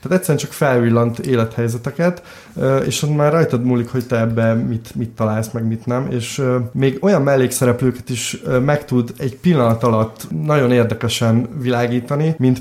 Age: 20-39